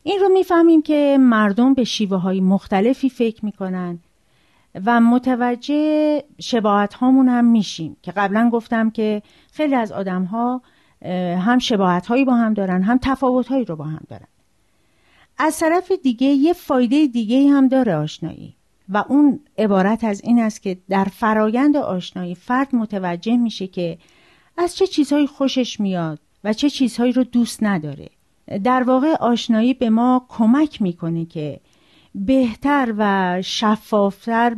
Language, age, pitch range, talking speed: Persian, 40-59, 195-260 Hz, 140 wpm